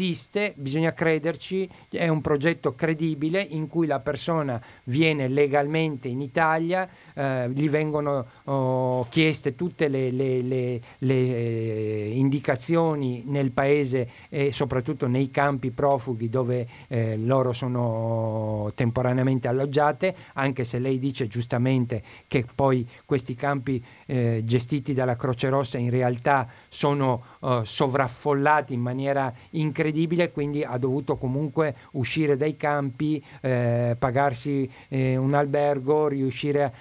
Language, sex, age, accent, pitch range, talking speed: Italian, male, 50-69, native, 125-150 Hz, 115 wpm